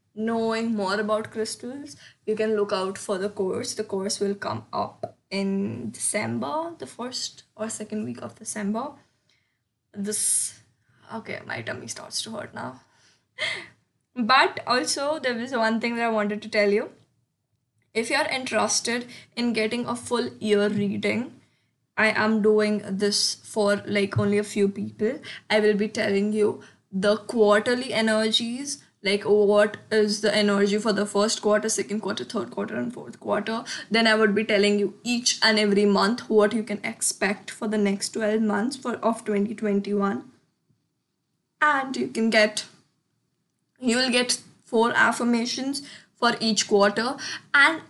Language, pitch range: English, 205-235 Hz